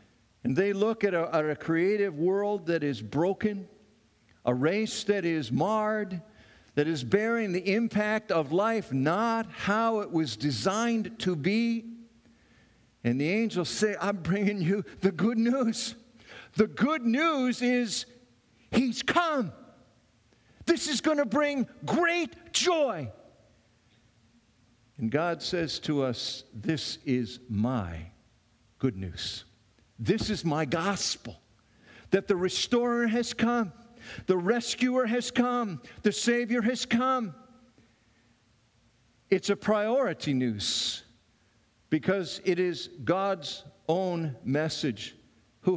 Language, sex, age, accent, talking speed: English, male, 50-69, American, 120 wpm